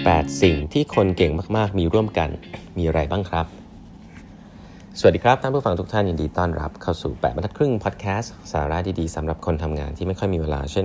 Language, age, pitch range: Thai, 30-49, 80-100 Hz